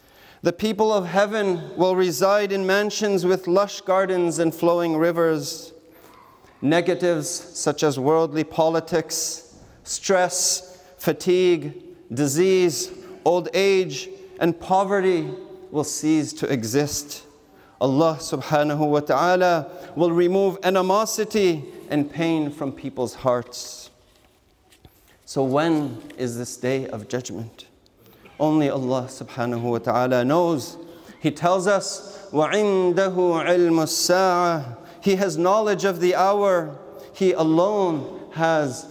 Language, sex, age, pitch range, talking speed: English, male, 40-59, 150-185 Hz, 110 wpm